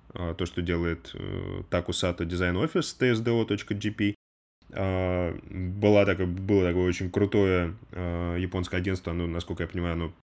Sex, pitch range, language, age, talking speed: male, 90-110 Hz, Russian, 20-39, 105 wpm